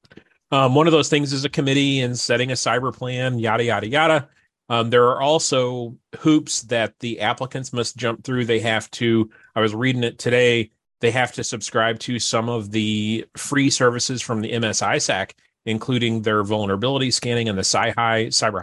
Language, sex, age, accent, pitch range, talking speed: English, male, 30-49, American, 110-130 Hz, 175 wpm